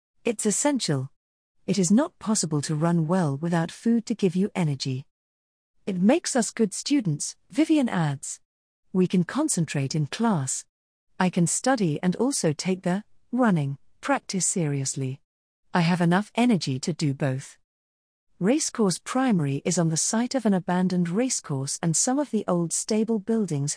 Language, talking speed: English, 155 wpm